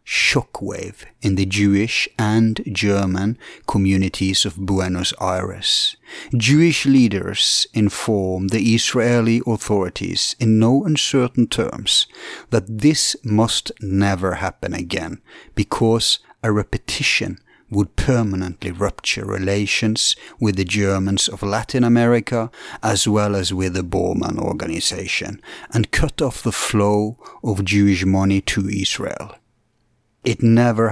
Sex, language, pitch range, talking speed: male, English, 95-115 Hz, 115 wpm